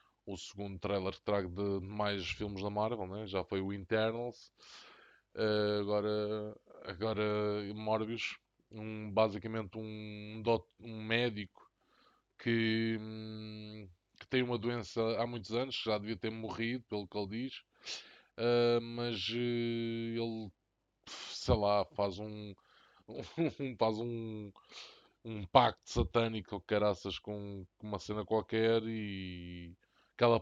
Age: 20-39